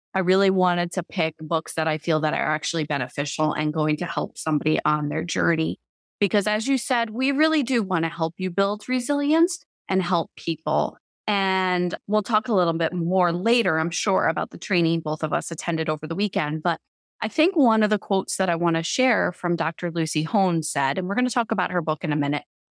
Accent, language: American, English